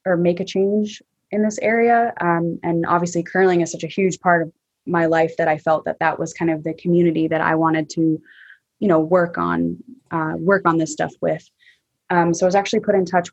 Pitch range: 170-200 Hz